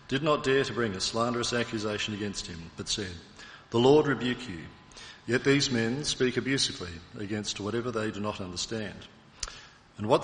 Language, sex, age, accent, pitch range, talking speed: English, male, 50-69, Australian, 100-125 Hz, 170 wpm